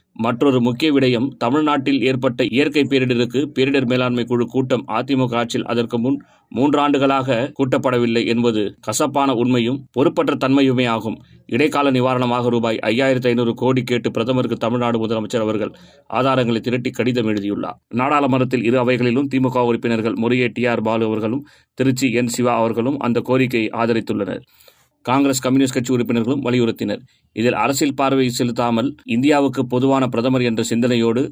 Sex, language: male, Tamil